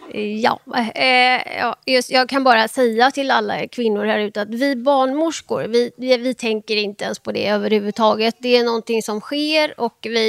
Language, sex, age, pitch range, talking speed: English, female, 20-39, 210-240 Hz, 185 wpm